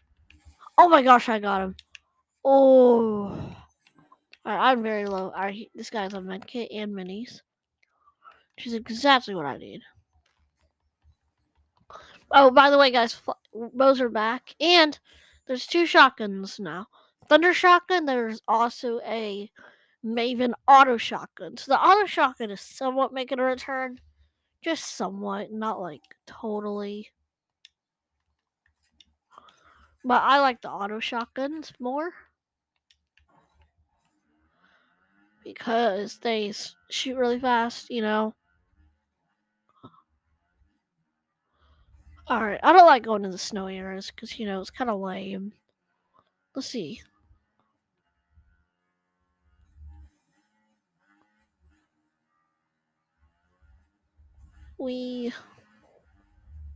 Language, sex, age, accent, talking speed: English, female, 20-39, American, 100 wpm